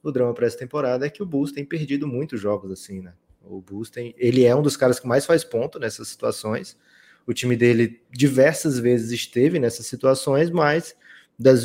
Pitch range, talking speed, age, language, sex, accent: 110-135 Hz, 200 wpm, 20-39, Portuguese, male, Brazilian